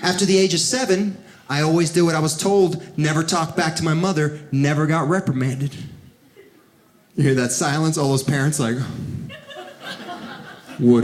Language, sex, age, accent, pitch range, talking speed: English, male, 30-49, American, 170-280 Hz, 165 wpm